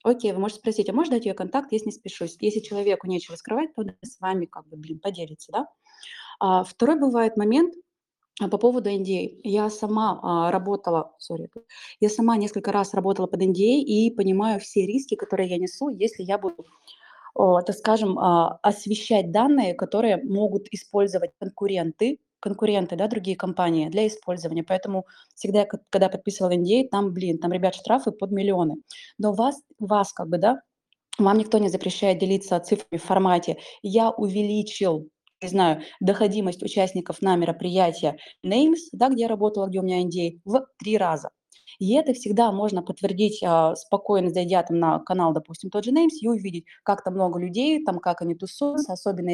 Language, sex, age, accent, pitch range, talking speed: Russian, female, 20-39, native, 180-220 Hz, 170 wpm